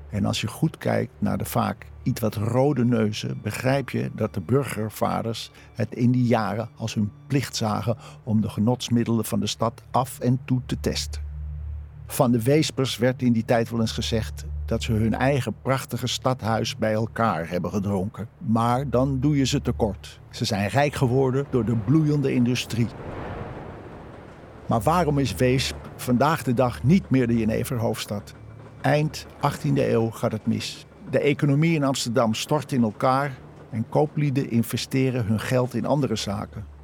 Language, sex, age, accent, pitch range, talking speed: Dutch, male, 50-69, Dutch, 110-130 Hz, 165 wpm